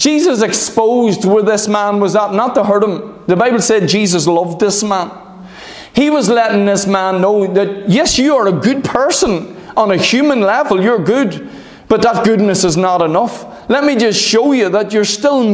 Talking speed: 195 wpm